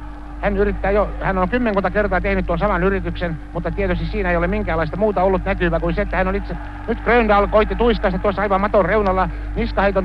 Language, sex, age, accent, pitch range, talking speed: Finnish, male, 60-79, native, 165-195 Hz, 210 wpm